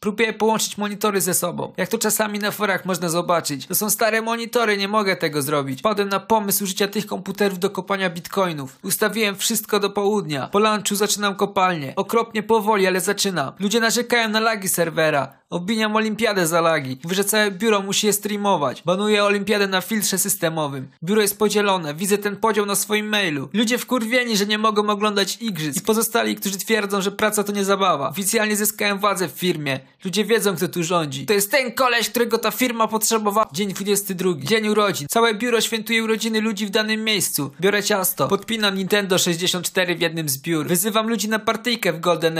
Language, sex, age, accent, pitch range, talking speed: Polish, male, 20-39, native, 185-220 Hz, 185 wpm